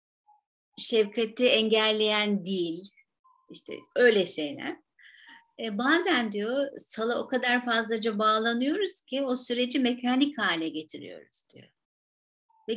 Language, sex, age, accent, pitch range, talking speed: Turkish, female, 50-69, native, 195-275 Hz, 105 wpm